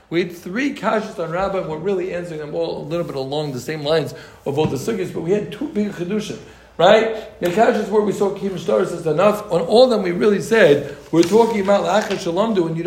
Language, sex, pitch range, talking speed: English, male, 170-220 Hz, 245 wpm